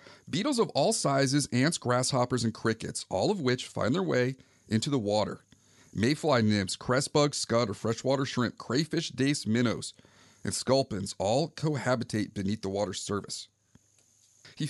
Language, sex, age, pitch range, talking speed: English, male, 40-59, 105-145 Hz, 150 wpm